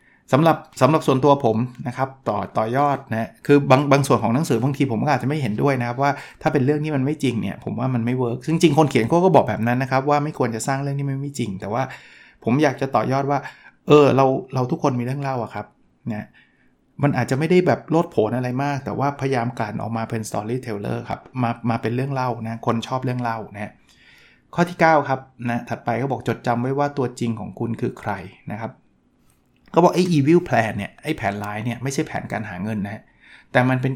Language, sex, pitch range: Thai, male, 115-145 Hz